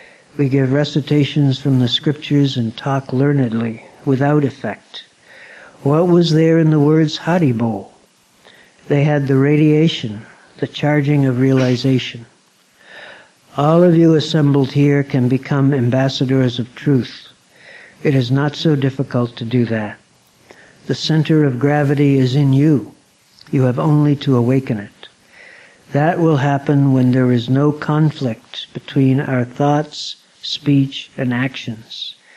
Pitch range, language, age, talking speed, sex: 130-145 Hz, English, 60-79, 130 wpm, male